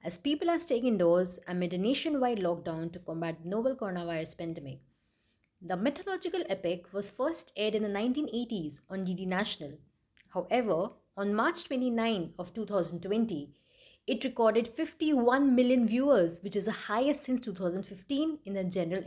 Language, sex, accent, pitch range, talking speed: English, female, Indian, 180-260 Hz, 150 wpm